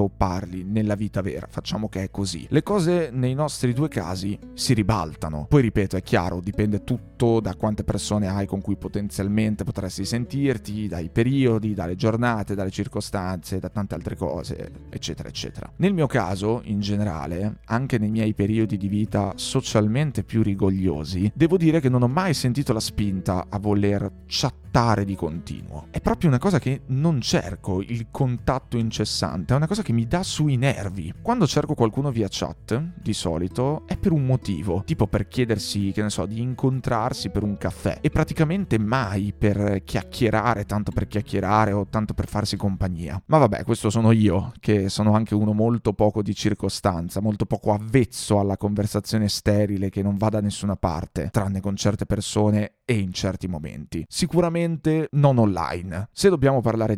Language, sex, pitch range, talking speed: Italian, male, 100-125 Hz, 170 wpm